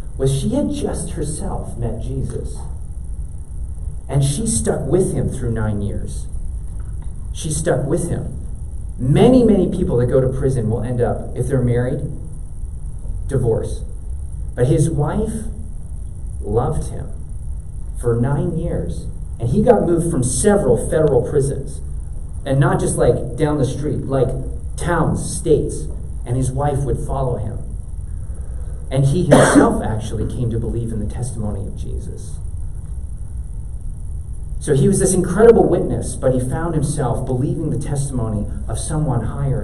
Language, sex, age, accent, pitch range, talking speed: English, male, 40-59, American, 85-135 Hz, 140 wpm